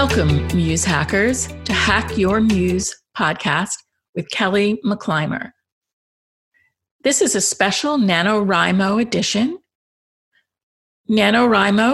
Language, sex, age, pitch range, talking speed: English, female, 50-69, 175-240 Hz, 90 wpm